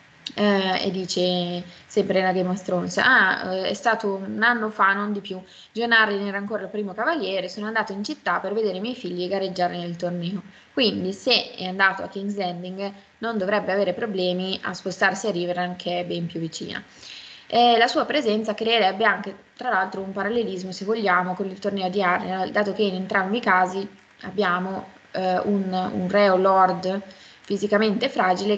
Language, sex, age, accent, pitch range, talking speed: Italian, female, 20-39, native, 185-215 Hz, 185 wpm